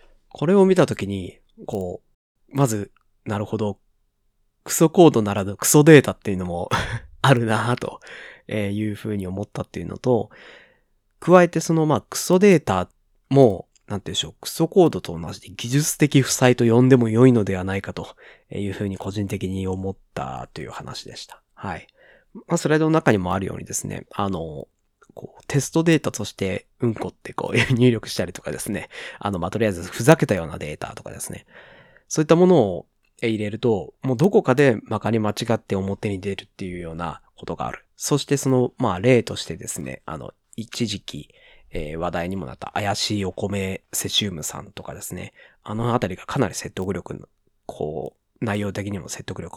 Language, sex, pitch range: Japanese, male, 100-140 Hz